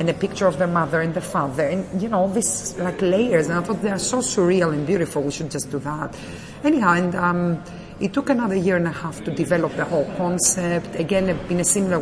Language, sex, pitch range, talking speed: English, female, 145-175 Hz, 240 wpm